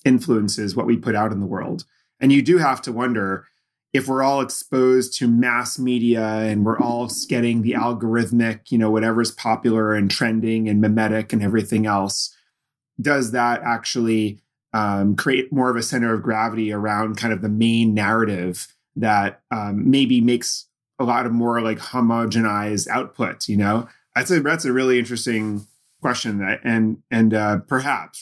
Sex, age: male, 30-49